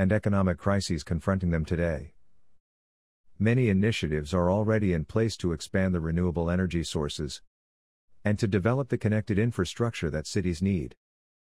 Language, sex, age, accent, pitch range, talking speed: English, male, 50-69, American, 85-100 Hz, 140 wpm